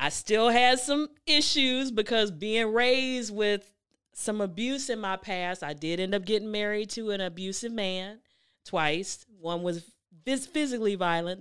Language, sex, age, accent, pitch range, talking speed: English, female, 30-49, American, 165-215 Hz, 155 wpm